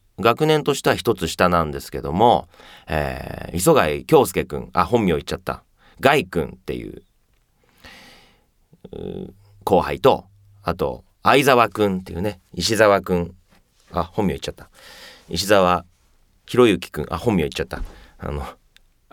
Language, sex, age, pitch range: Japanese, male, 40-59, 80-100 Hz